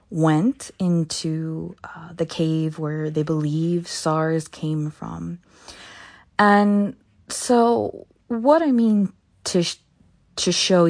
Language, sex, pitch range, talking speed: English, female, 155-200 Hz, 105 wpm